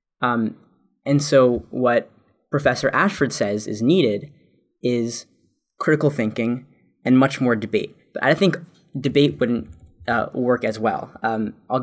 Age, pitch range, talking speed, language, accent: 10-29, 115-135 Hz, 135 wpm, English, American